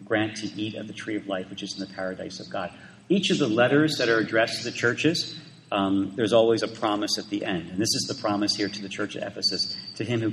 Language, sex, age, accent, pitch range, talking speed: English, male, 40-59, American, 100-140 Hz, 275 wpm